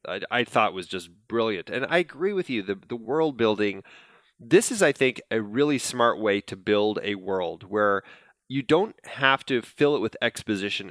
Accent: American